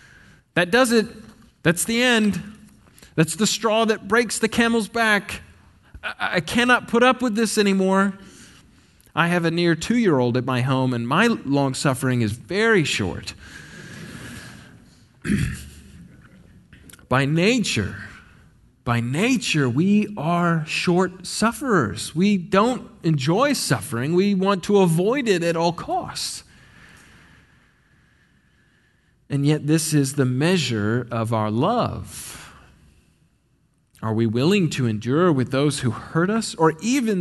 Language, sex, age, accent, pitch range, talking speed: English, male, 30-49, American, 130-210 Hz, 125 wpm